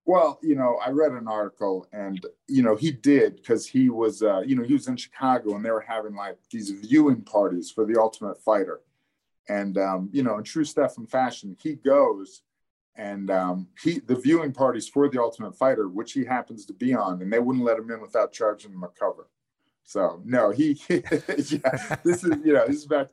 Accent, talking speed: American, 215 wpm